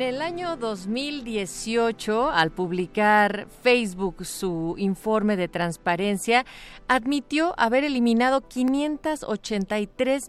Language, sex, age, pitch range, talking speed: Spanish, female, 40-59, 195-245 Hz, 85 wpm